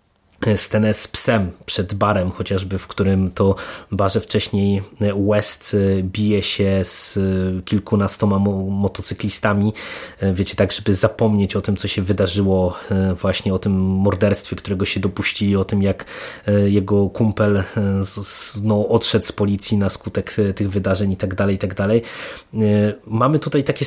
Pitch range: 100-125 Hz